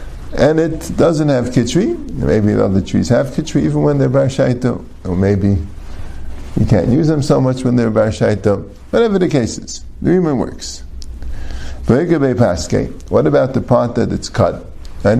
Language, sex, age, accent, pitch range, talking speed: English, male, 50-69, American, 75-125 Hz, 160 wpm